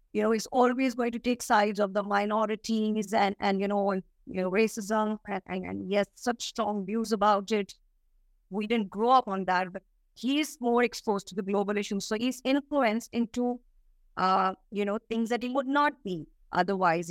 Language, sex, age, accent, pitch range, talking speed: English, female, 50-69, Indian, 195-255 Hz, 190 wpm